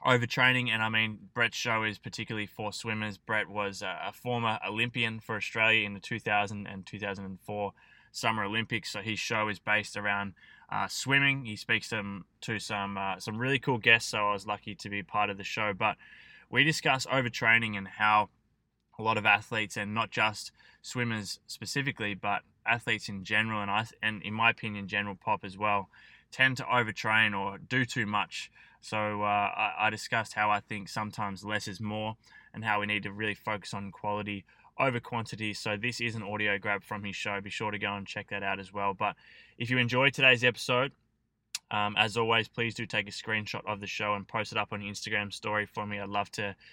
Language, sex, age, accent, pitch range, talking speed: English, male, 20-39, Australian, 100-115 Hz, 205 wpm